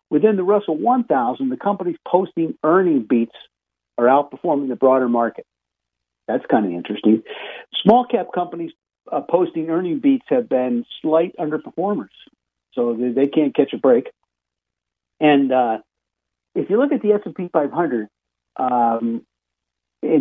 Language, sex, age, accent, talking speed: English, male, 50-69, American, 145 wpm